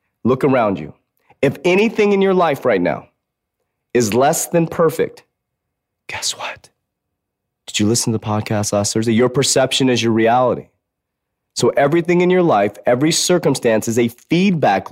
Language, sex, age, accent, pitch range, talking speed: English, male, 30-49, American, 105-155 Hz, 155 wpm